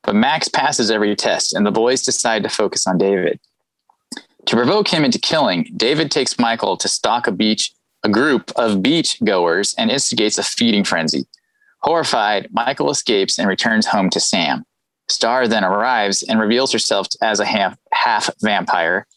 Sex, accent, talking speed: male, American, 170 wpm